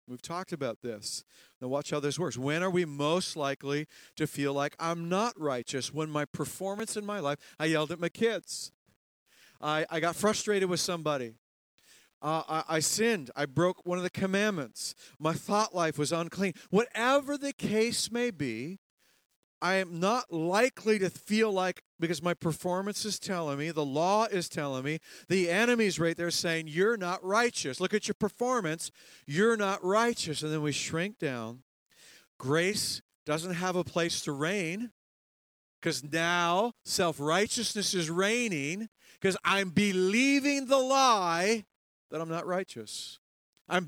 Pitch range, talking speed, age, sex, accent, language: 155-205 Hz, 160 wpm, 40-59, male, American, English